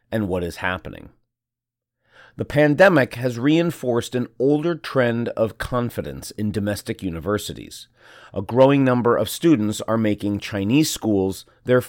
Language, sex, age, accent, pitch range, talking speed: English, male, 30-49, American, 105-135 Hz, 130 wpm